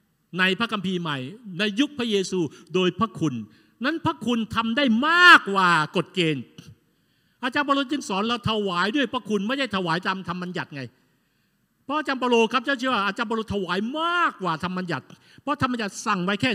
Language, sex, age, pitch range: Thai, male, 60-79, 160-225 Hz